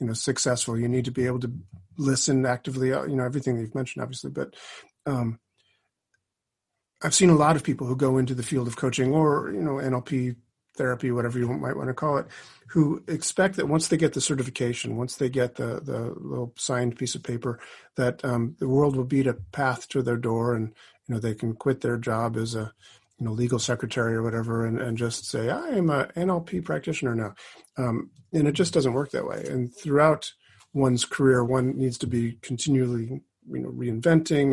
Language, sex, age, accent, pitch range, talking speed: English, male, 40-59, American, 120-140 Hz, 205 wpm